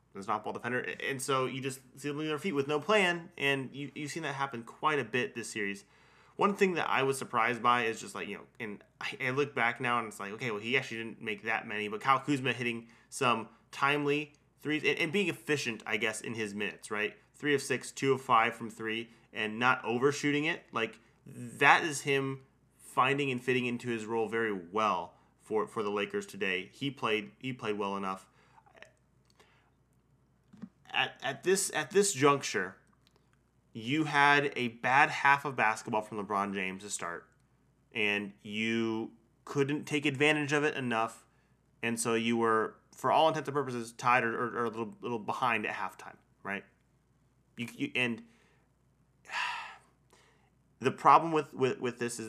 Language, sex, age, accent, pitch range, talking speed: English, male, 20-39, American, 115-145 Hz, 185 wpm